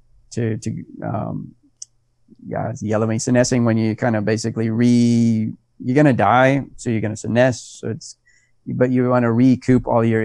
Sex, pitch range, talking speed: male, 115-125 Hz, 180 wpm